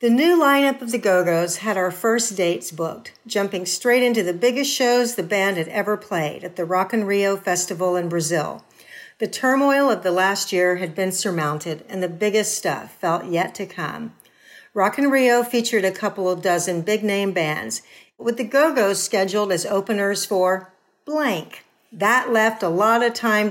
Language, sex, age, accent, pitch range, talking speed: English, female, 50-69, American, 185-240 Hz, 175 wpm